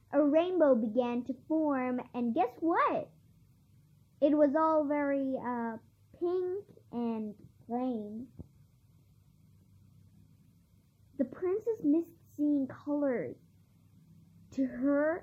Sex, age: male, 10-29